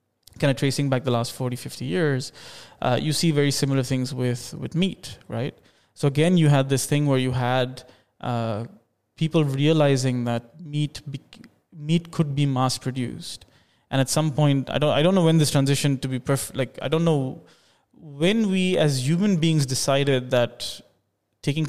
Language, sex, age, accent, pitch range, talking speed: English, male, 20-39, Indian, 125-145 Hz, 185 wpm